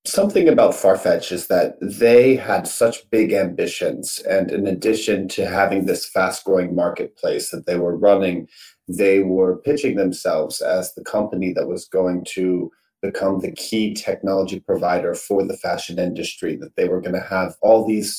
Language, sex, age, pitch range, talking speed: English, male, 30-49, 90-110 Hz, 170 wpm